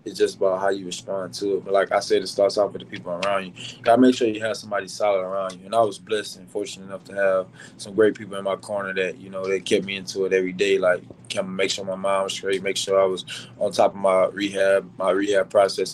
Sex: male